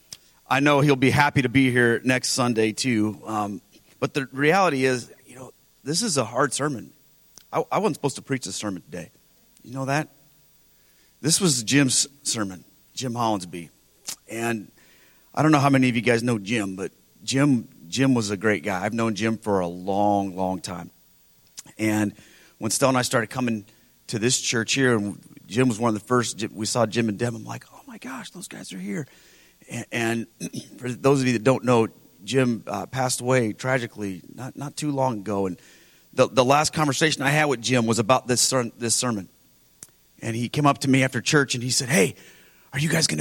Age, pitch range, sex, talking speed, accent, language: 40-59, 105-135 Hz, male, 205 wpm, American, English